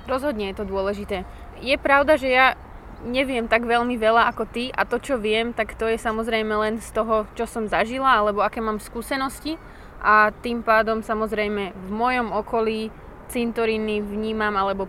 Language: Slovak